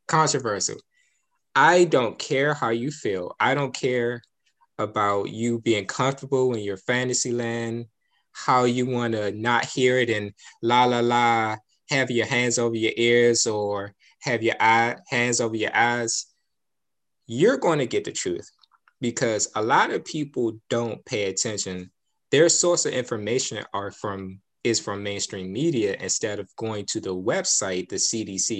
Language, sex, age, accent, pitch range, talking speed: English, male, 20-39, American, 110-135 Hz, 155 wpm